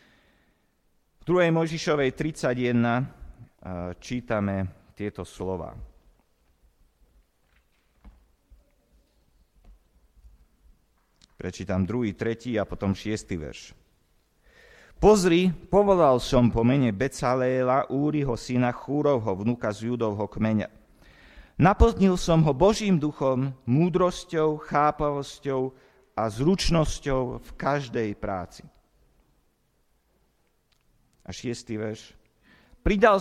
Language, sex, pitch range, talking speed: Slovak, male, 95-145 Hz, 75 wpm